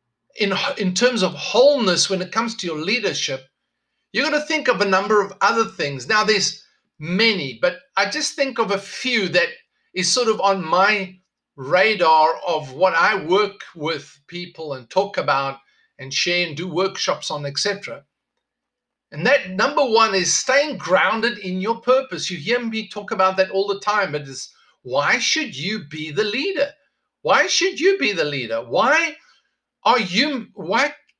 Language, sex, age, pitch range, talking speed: English, male, 50-69, 180-255 Hz, 175 wpm